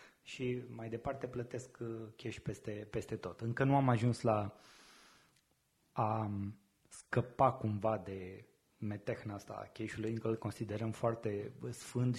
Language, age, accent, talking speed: Romanian, 20-39, native, 130 wpm